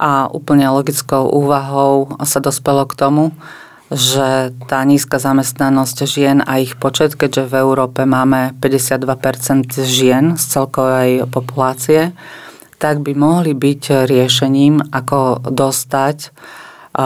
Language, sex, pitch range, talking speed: Slovak, female, 130-145 Hz, 115 wpm